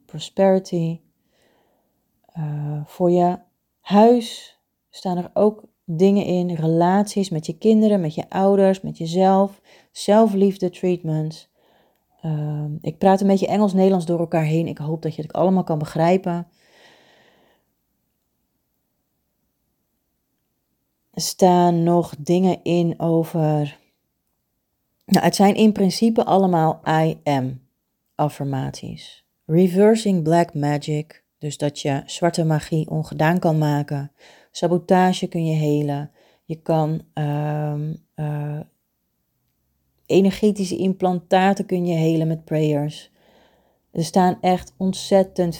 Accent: Dutch